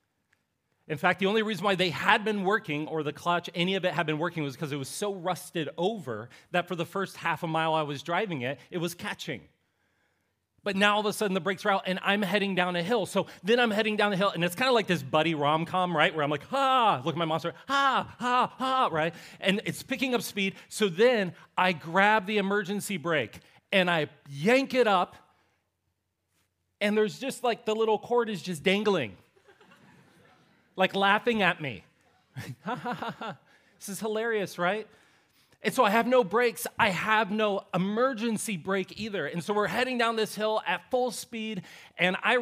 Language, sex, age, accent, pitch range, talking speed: English, male, 40-59, American, 170-215 Hz, 210 wpm